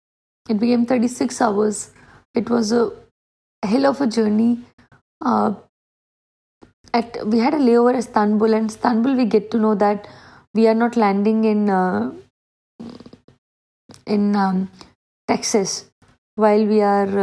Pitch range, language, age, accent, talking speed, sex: 215-240 Hz, Hindi, 20-39, native, 135 wpm, female